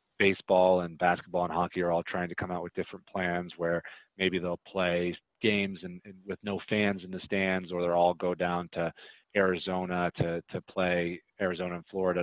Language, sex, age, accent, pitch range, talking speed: English, male, 30-49, American, 85-95 Hz, 195 wpm